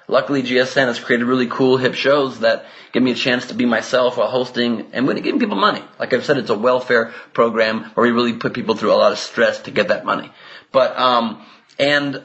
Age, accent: 30-49, American